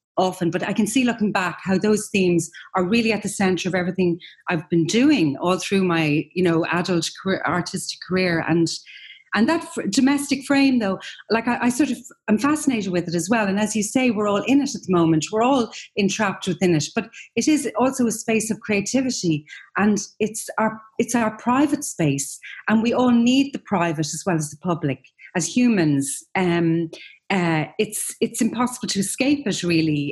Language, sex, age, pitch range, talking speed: English, female, 30-49, 175-225 Hz, 200 wpm